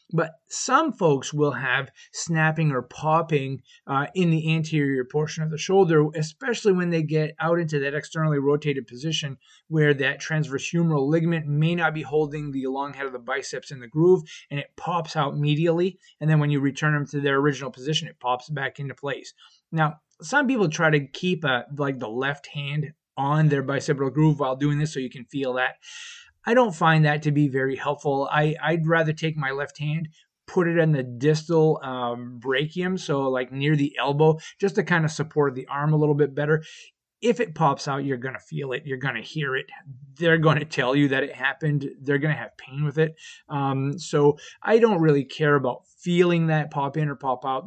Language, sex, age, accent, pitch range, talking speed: English, male, 20-39, American, 140-160 Hz, 210 wpm